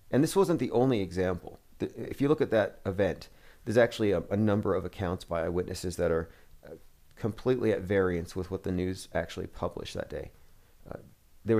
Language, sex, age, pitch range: English, male, 40-59, 95-115 Hz